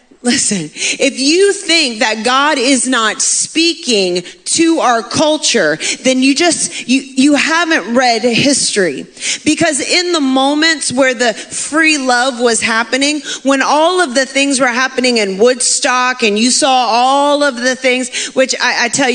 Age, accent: 30-49, American